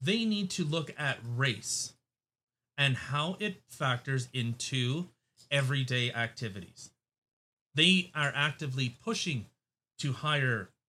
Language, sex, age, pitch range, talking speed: English, male, 30-49, 130-185 Hz, 105 wpm